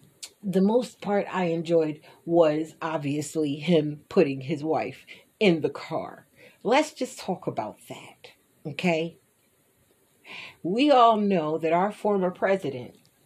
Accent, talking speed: American, 120 wpm